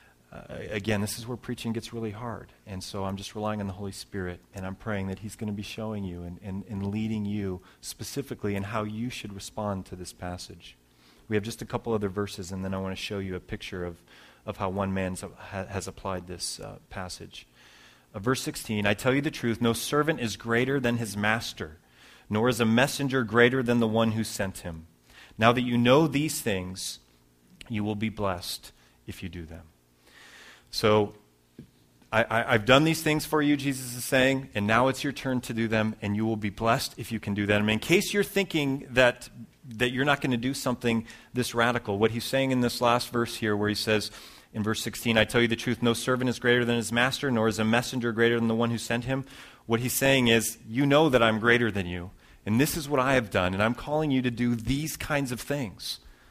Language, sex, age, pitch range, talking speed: English, male, 30-49, 100-125 Hz, 235 wpm